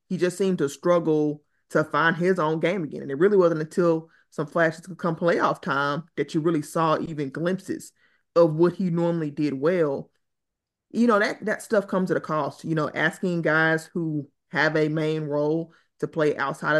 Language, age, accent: English, 20-39, American